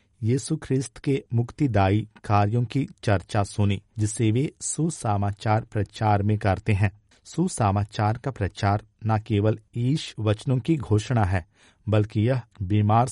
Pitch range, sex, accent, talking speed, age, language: 105-125 Hz, male, native, 130 wpm, 50-69, Hindi